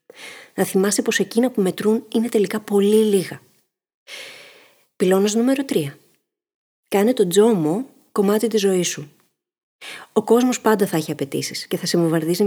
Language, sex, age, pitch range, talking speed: Greek, female, 30-49, 185-235 Hz, 145 wpm